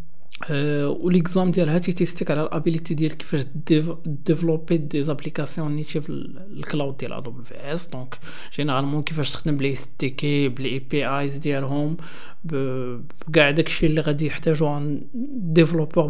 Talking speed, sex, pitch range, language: 125 wpm, male, 140-170 Hz, Arabic